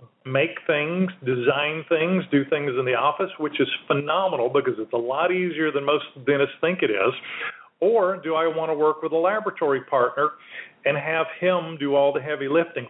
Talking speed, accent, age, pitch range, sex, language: 190 wpm, American, 40-59, 140-170 Hz, male, English